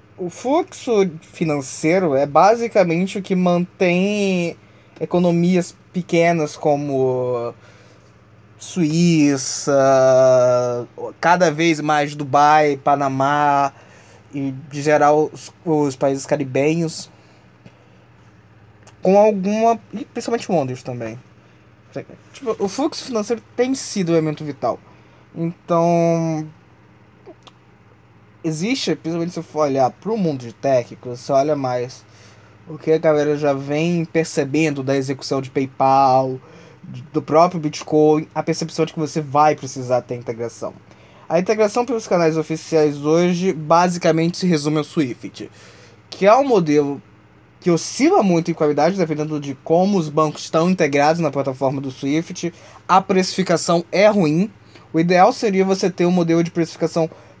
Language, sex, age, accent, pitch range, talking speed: Portuguese, male, 20-39, Brazilian, 140-175 Hz, 125 wpm